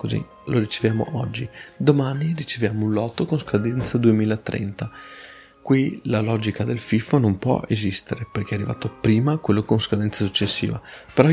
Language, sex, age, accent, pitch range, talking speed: Italian, male, 20-39, native, 105-125 Hz, 150 wpm